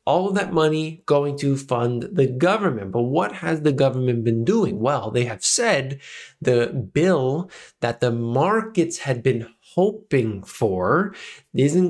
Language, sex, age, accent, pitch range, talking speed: English, male, 20-39, American, 125-175 Hz, 150 wpm